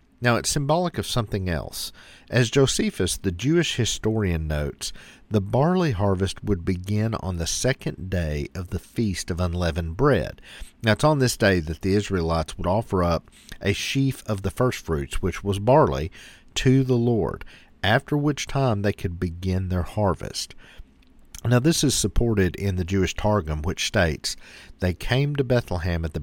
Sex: male